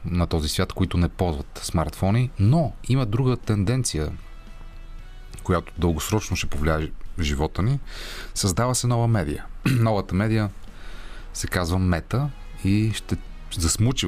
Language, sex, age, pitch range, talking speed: Bulgarian, male, 30-49, 85-105 Hz, 125 wpm